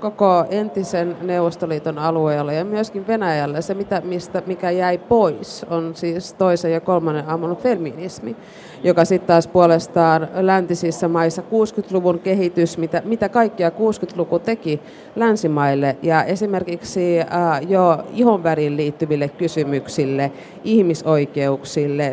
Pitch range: 150-185 Hz